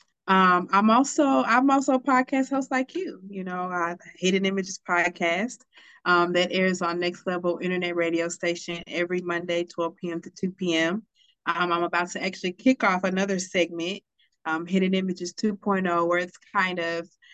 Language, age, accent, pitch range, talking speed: English, 20-39, American, 170-195 Hz, 170 wpm